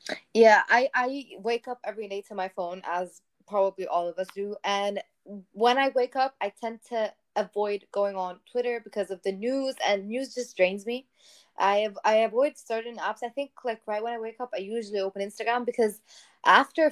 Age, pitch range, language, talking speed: 20-39, 200-250 Hz, English, 200 wpm